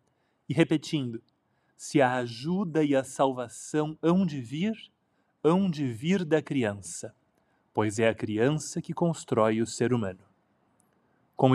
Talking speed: 135 wpm